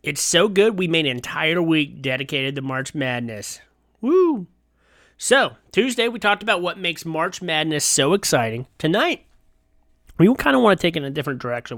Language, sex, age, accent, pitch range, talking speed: English, male, 30-49, American, 135-175 Hz, 185 wpm